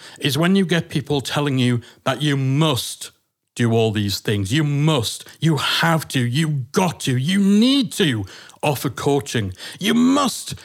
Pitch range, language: 125-185 Hz, English